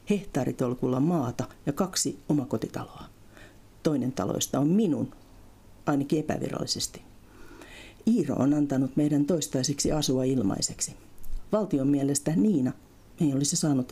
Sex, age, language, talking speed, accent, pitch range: female, 50-69, Finnish, 105 wpm, native, 115-155 Hz